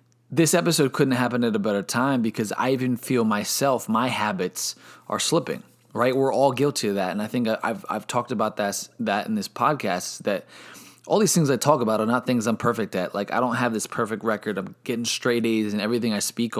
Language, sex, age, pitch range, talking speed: English, male, 20-39, 110-135 Hz, 230 wpm